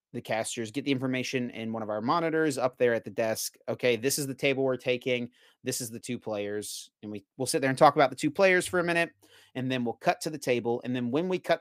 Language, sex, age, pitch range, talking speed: English, male, 30-49, 120-150 Hz, 270 wpm